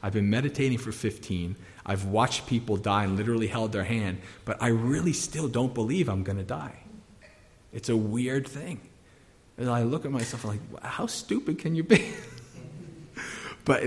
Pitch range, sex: 100-135 Hz, male